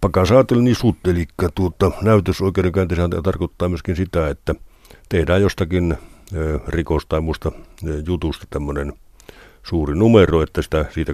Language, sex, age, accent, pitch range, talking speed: Finnish, male, 60-79, native, 75-95 Hz, 120 wpm